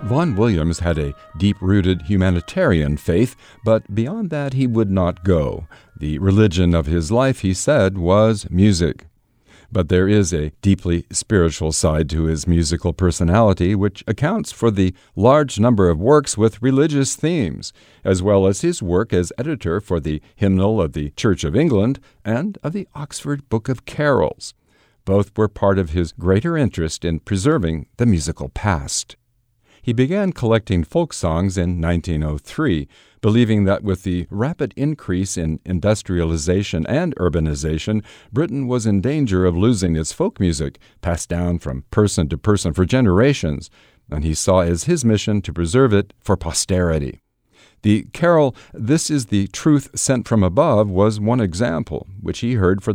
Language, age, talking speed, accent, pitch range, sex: English, 50-69, 160 wpm, American, 85-115 Hz, male